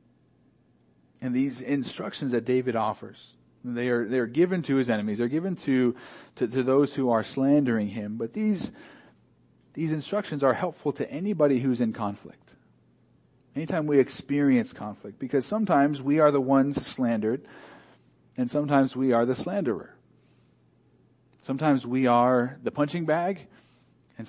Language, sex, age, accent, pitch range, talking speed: English, male, 40-59, American, 110-140 Hz, 145 wpm